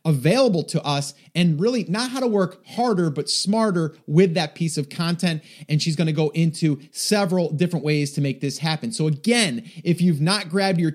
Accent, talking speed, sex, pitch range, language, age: American, 205 wpm, male, 150-195 Hz, English, 30-49